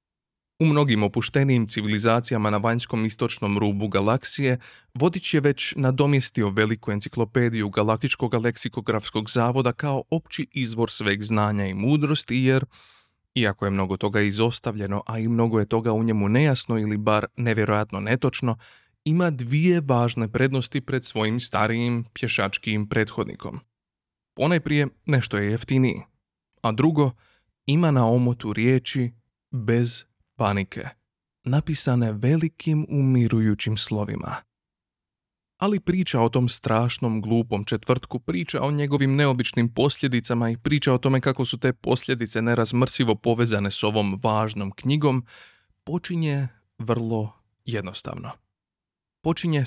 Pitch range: 110-135 Hz